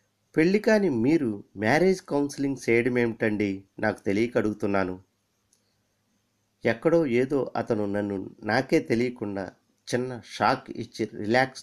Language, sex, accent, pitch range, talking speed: Telugu, male, native, 105-135 Hz, 100 wpm